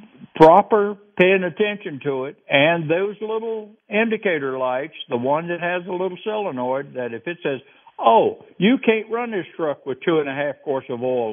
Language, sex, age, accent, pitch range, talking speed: English, male, 60-79, American, 130-165 Hz, 185 wpm